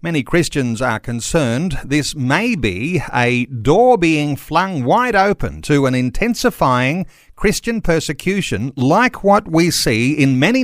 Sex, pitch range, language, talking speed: male, 130-175 Hz, English, 135 wpm